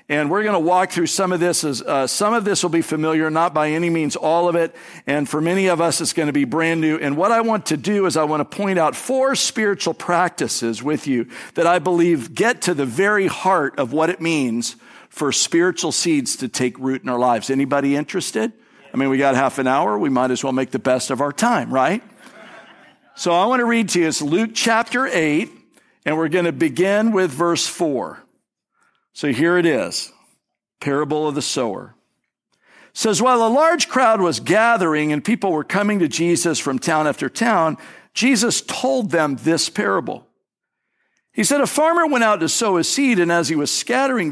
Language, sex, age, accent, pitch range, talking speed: English, male, 50-69, American, 145-215 Hz, 215 wpm